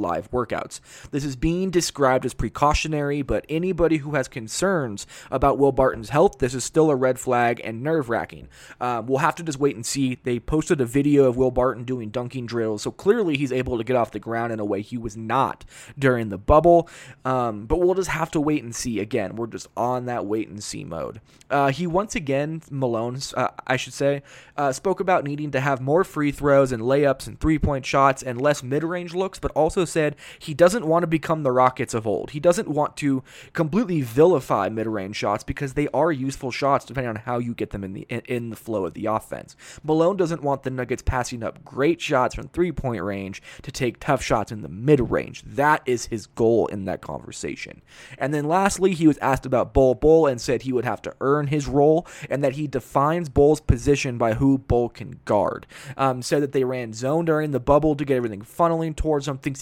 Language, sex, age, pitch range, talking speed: English, male, 20-39, 120-150 Hz, 215 wpm